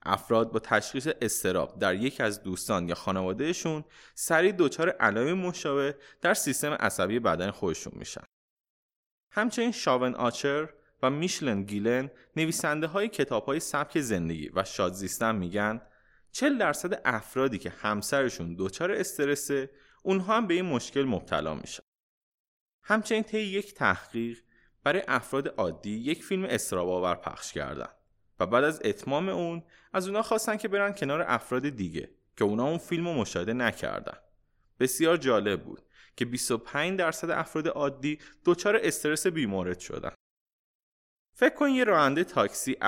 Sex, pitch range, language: male, 110-180 Hz, Persian